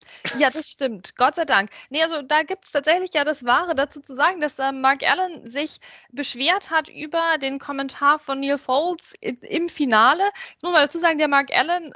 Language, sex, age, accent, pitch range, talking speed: German, female, 20-39, German, 245-330 Hz, 205 wpm